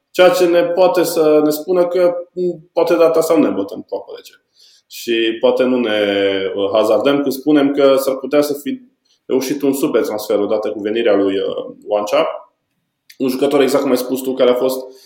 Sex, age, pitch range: male, 20-39, 115-175 Hz